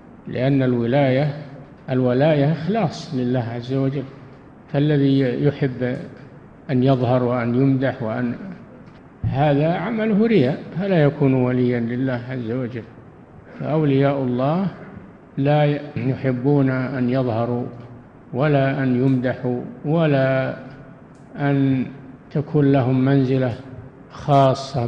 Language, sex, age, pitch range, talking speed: Arabic, male, 50-69, 125-150 Hz, 90 wpm